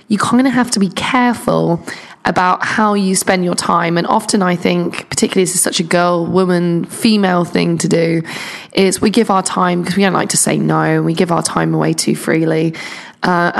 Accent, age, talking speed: British, 20-39, 205 wpm